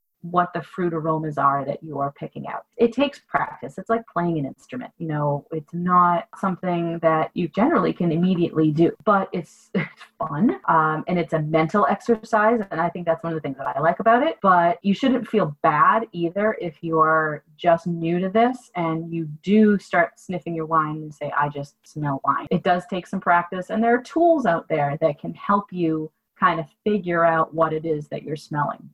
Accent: American